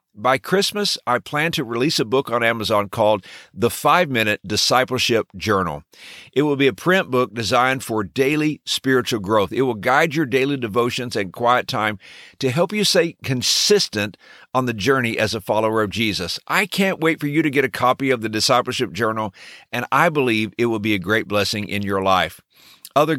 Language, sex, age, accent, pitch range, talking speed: English, male, 50-69, American, 110-145 Hz, 190 wpm